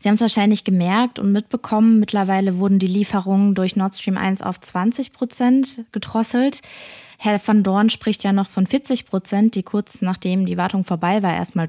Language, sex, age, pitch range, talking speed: German, female, 20-39, 180-220 Hz, 185 wpm